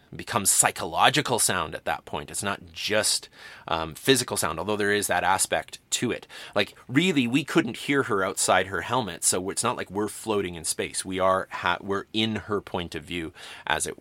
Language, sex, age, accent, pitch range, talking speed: English, male, 30-49, American, 95-115 Hz, 200 wpm